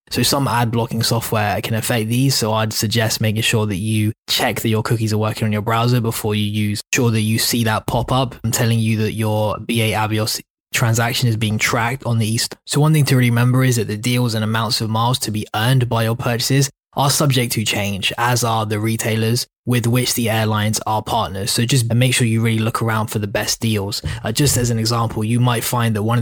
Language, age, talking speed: English, 20-39, 240 wpm